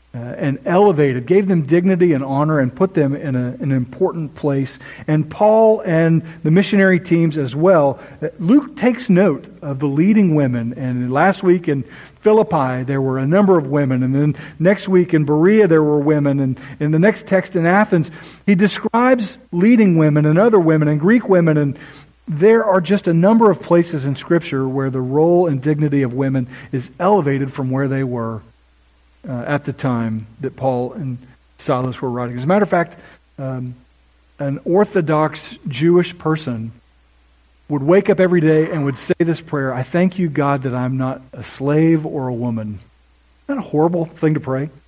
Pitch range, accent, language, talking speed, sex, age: 130-180 Hz, American, English, 185 wpm, male, 50-69